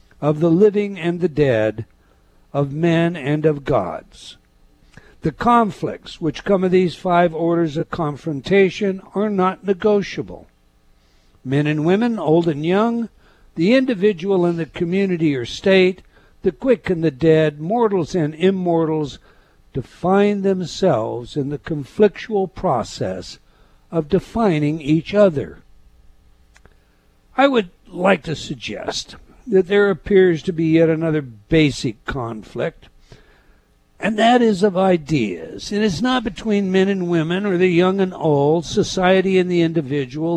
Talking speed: 135 wpm